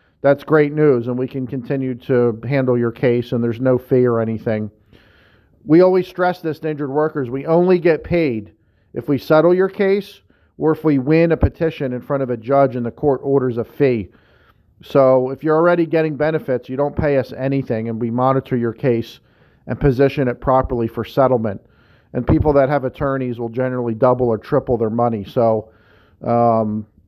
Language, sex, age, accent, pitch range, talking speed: English, male, 40-59, American, 120-145 Hz, 190 wpm